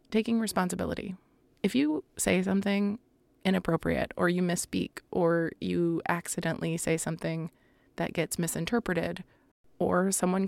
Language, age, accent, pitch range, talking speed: English, 20-39, American, 175-205 Hz, 115 wpm